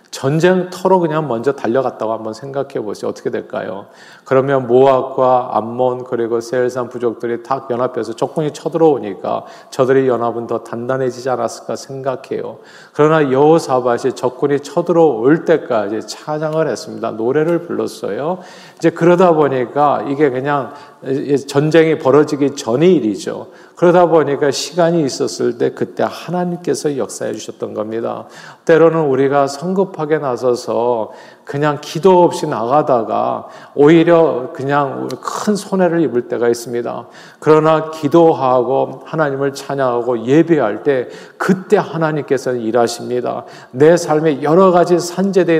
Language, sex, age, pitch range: Korean, male, 40-59, 125-165 Hz